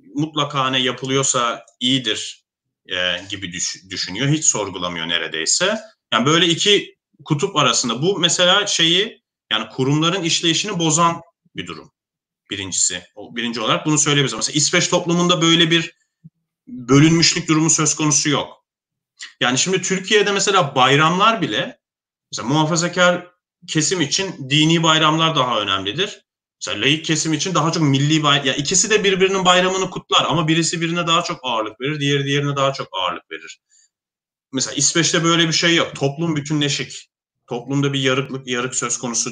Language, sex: Turkish, male